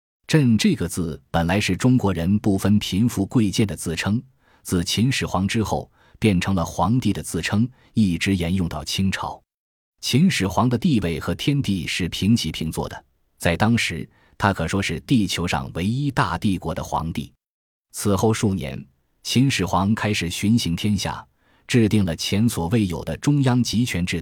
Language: Chinese